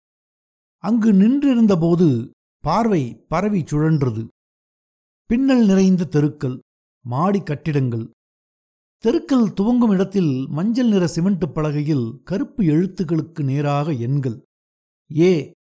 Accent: native